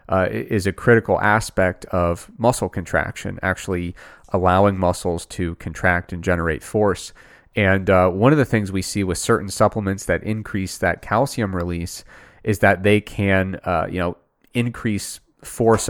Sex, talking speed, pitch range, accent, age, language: male, 155 wpm, 95-110 Hz, American, 30-49, English